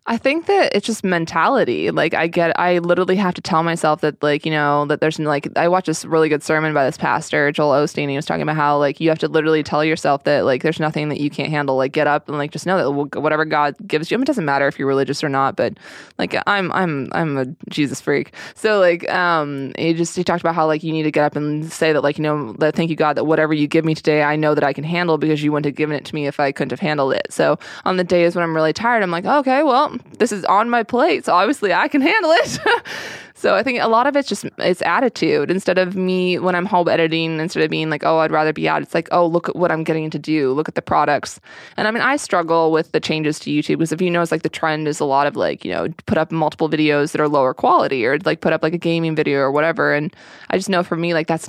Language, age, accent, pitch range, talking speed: English, 20-39, American, 150-175 Hz, 285 wpm